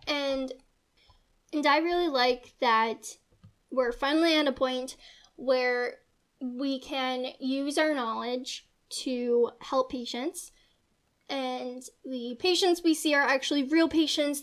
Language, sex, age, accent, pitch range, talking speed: English, female, 10-29, American, 250-295 Hz, 120 wpm